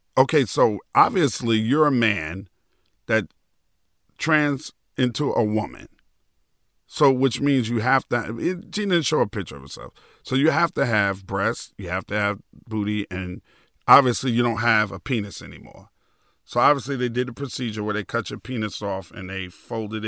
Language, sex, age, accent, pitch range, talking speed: English, male, 40-59, American, 100-125 Hz, 175 wpm